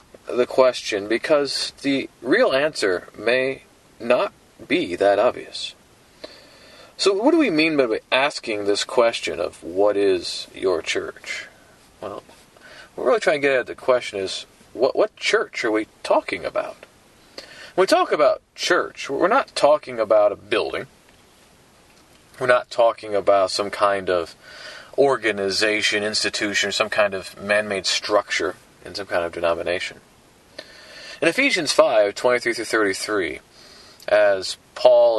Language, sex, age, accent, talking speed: English, male, 40-59, American, 140 wpm